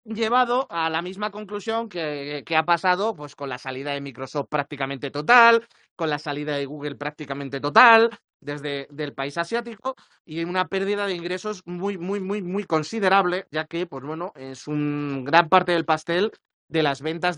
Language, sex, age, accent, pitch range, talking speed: Spanish, male, 30-49, Spanish, 150-195 Hz, 175 wpm